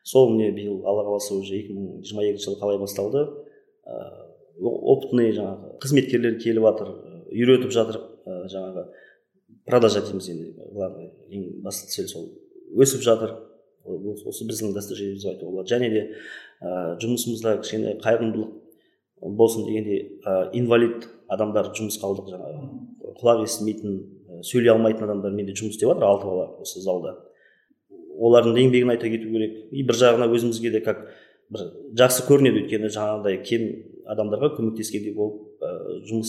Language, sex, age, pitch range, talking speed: Russian, male, 20-39, 105-135 Hz, 65 wpm